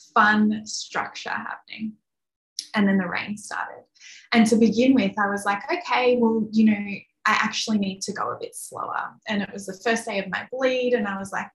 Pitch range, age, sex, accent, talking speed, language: 190-225 Hz, 10-29, female, Australian, 210 wpm, English